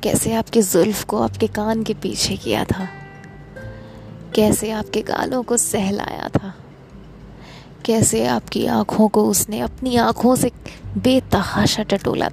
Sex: female